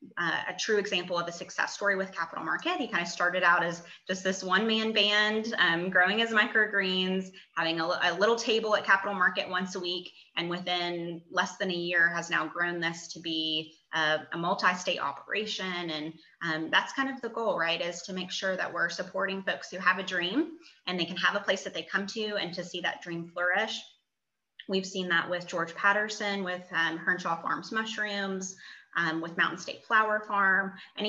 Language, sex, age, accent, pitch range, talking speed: English, female, 20-39, American, 170-200 Hz, 205 wpm